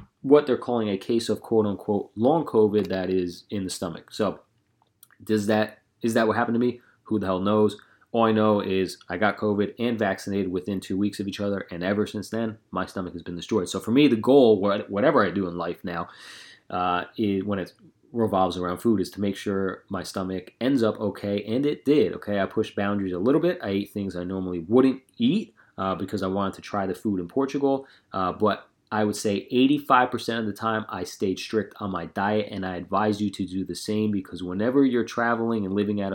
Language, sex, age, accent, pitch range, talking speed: English, male, 30-49, American, 95-110 Hz, 225 wpm